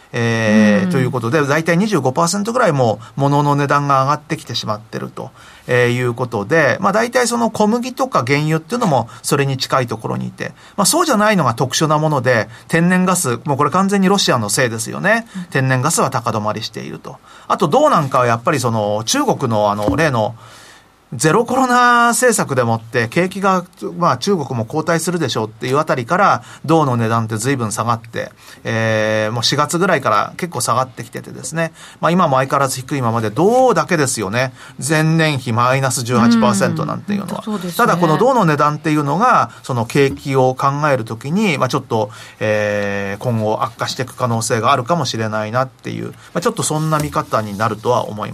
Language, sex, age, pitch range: Japanese, male, 40-59, 115-170 Hz